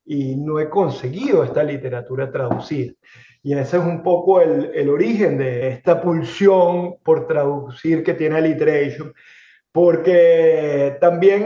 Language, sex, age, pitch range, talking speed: Spanish, male, 30-49, 160-215 Hz, 130 wpm